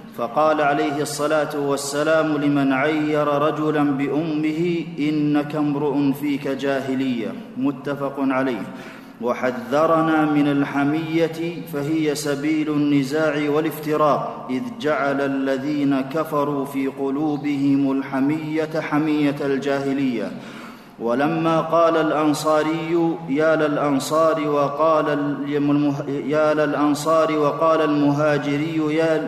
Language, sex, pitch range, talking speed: Arabic, male, 140-155 Hz, 75 wpm